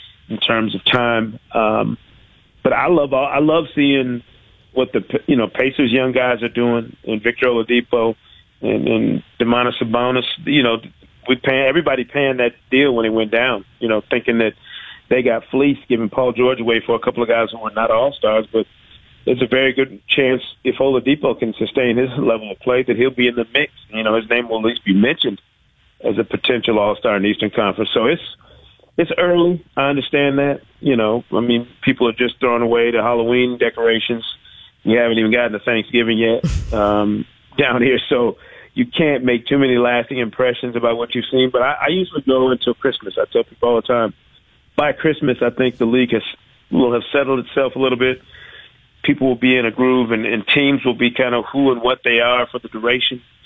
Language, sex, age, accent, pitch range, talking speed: English, male, 40-59, American, 115-130 Hz, 210 wpm